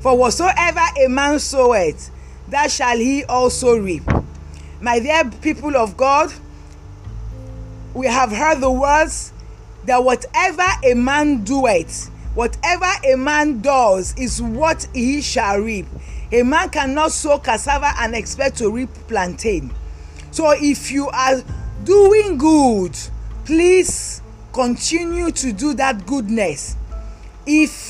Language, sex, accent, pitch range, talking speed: English, female, Nigerian, 245-315 Hz, 125 wpm